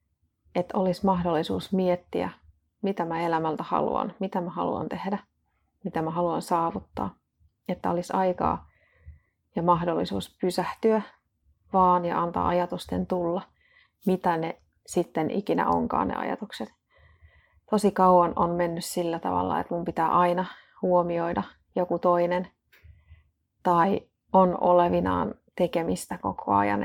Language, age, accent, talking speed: Finnish, 30-49, native, 120 wpm